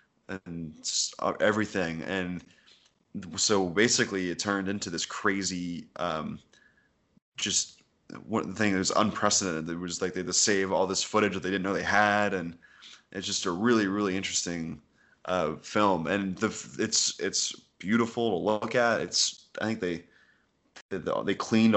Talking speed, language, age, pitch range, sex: 155 wpm, English, 20-39, 90-105 Hz, male